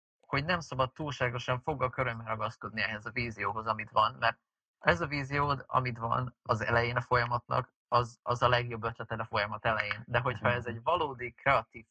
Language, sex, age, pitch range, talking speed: Hungarian, male, 30-49, 110-130 Hz, 180 wpm